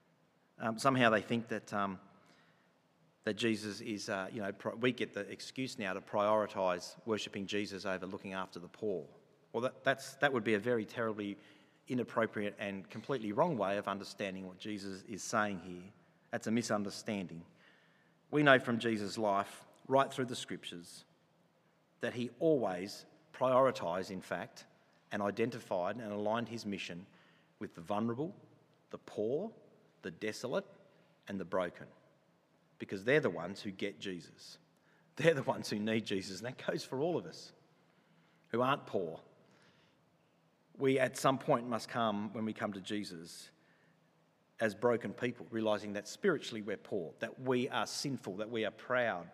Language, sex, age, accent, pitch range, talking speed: English, male, 40-59, Australian, 100-120 Hz, 160 wpm